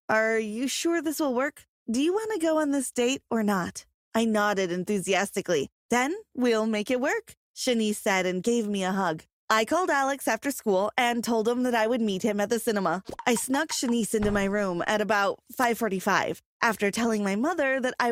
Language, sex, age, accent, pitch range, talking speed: English, female, 20-39, American, 205-270 Hz, 205 wpm